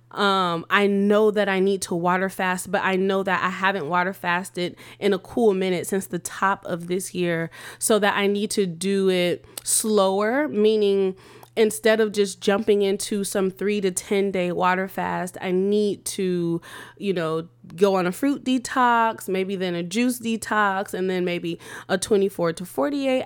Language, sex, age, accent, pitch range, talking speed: English, female, 20-39, American, 180-205 Hz, 180 wpm